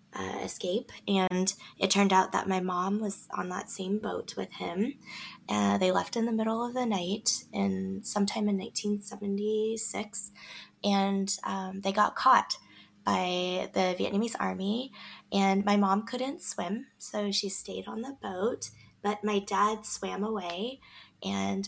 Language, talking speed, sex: English, 150 wpm, female